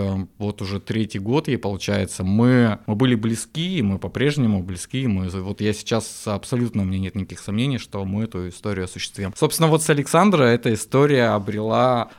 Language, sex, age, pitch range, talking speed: Russian, male, 20-39, 100-120 Hz, 180 wpm